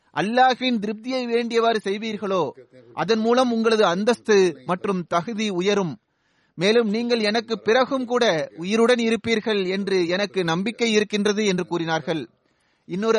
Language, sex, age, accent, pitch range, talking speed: Tamil, male, 30-49, native, 185-220 Hz, 115 wpm